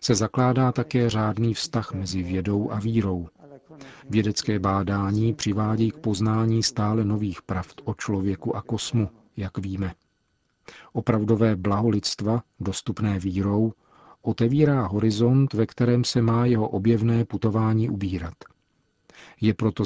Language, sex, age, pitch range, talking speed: Czech, male, 40-59, 100-115 Hz, 120 wpm